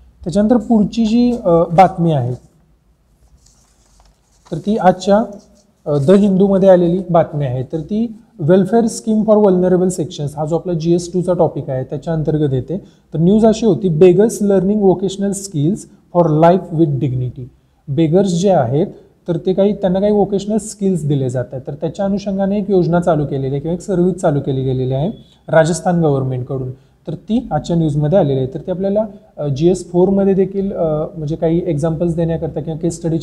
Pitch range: 150-190 Hz